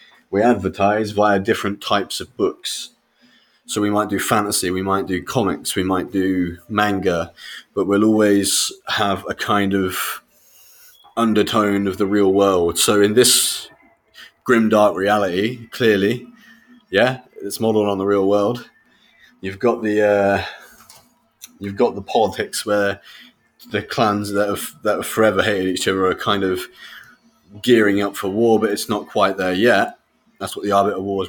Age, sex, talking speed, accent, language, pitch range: 20-39, male, 160 wpm, British, Ukrainian, 95-105 Hz